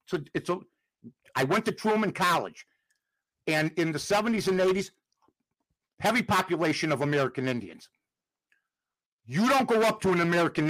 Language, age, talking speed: English, 60-79, 145 wpm